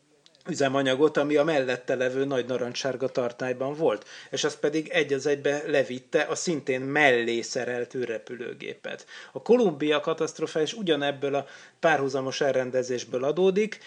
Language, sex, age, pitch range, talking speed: Hungarian, male, 30-49, 130-160 Hz, 125 wpm